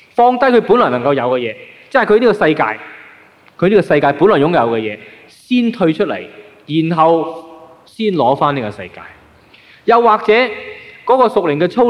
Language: Chinese